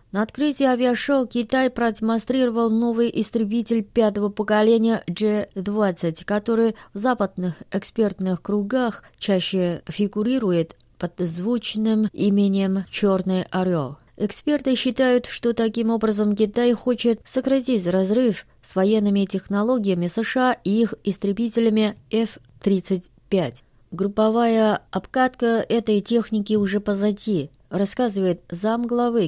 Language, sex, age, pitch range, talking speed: Russian, female, 20-39, 190-230 Hz, 100 wpm